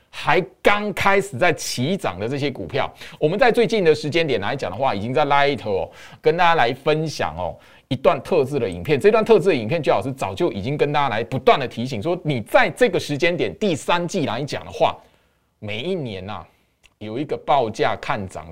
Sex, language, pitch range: male, Chinese, 135-215 Hz